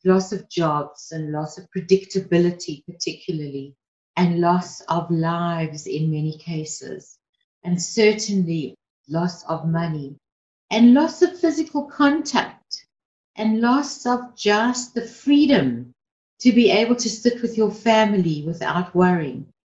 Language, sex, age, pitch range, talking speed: English, female, 60-79, 170-225 Hz, 125 wpm